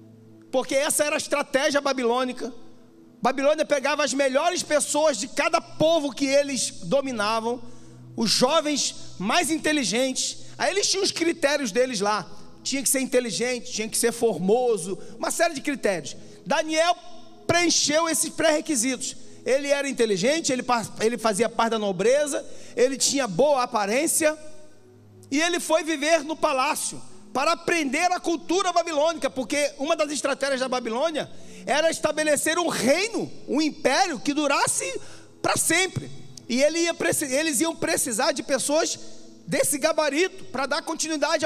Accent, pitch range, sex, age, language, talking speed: Brazilian, 255-325 Hz, male, 40-59, Portuguese, 135 wpm